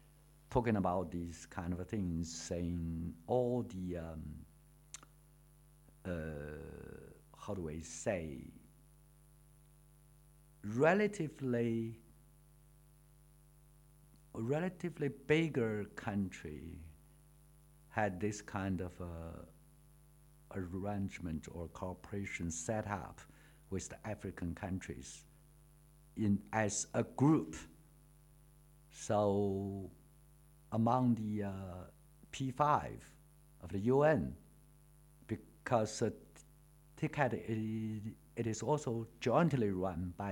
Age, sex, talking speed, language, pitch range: 60-79, male, 80 wpm, English, 100-150 Hz